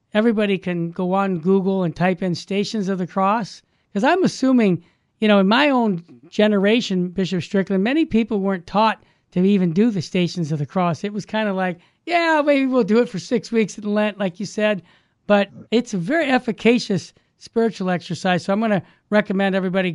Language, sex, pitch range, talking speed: English, male, 190-245 Hz, 200 wpm